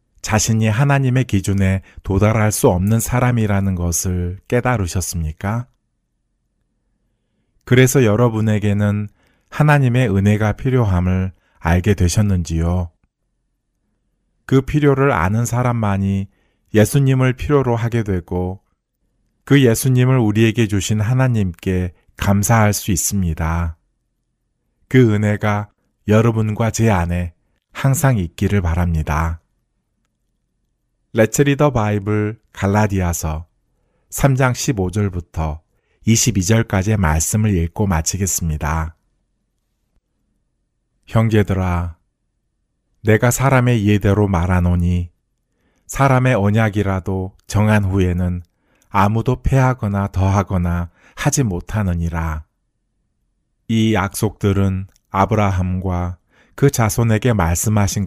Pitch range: 90-115 Hz